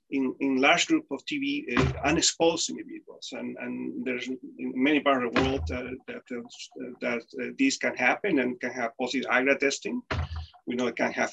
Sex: male